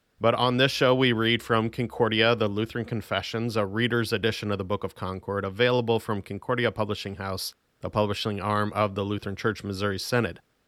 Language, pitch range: English, 100-120 Hz